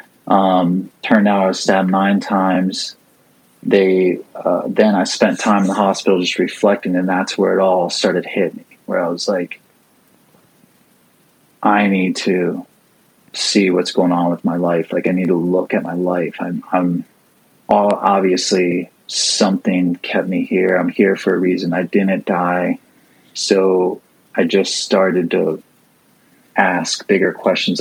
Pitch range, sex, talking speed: 90-95 Hz, male, 160 wpm